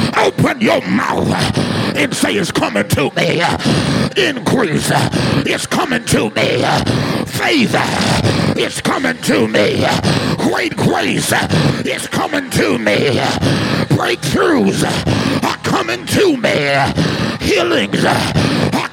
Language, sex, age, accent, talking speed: English, male, 50-69, American, 100 wpm